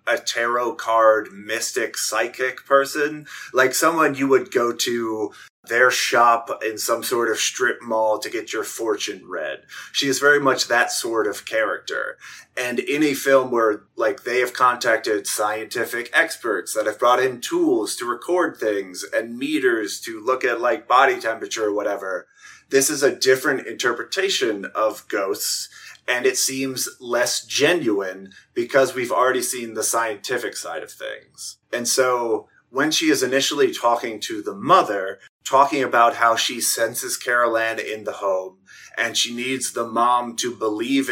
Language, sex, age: English, male, 30-49